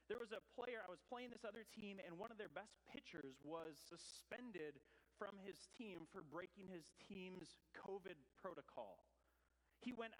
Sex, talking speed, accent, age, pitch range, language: male, 170 wpm, American, 30-49, 165-210 Hz, English